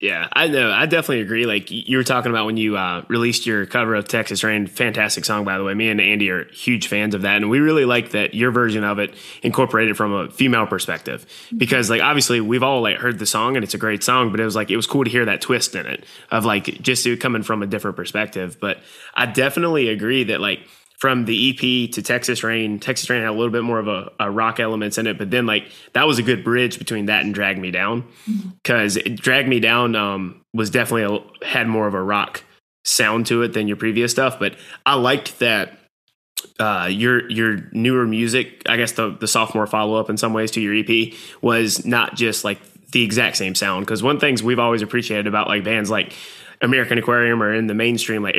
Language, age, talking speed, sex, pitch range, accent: English, 20-39, 240 wpm, male, 105-120 Hz, American